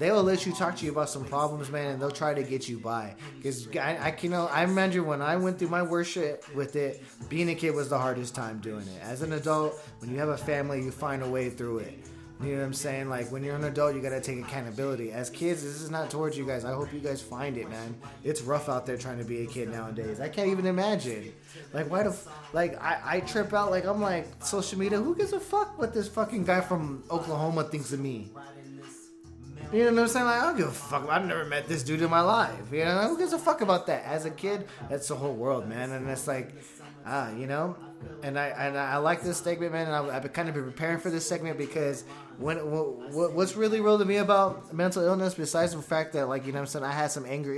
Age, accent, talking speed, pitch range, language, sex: 20-39, American, 265 wpm, 135-170 Hz, English, male